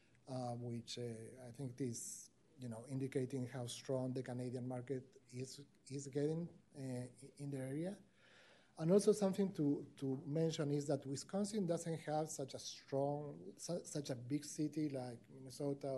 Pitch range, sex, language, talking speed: 125-150 Hz, male, English, 160 wpm